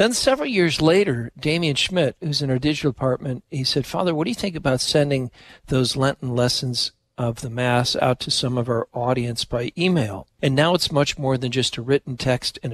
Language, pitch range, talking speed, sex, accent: English, 120-150 Hz, 210 wpm, male, American